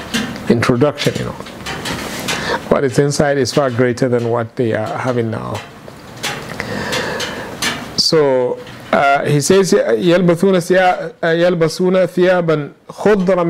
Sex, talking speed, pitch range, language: male, 95 wpm, 130-165 Hz, English